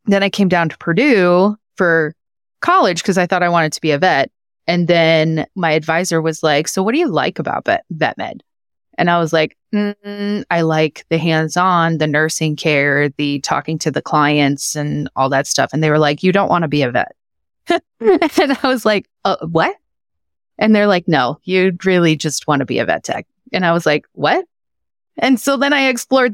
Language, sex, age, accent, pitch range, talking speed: English, female, 30-49, American, 155-205 Hz, 210 wpm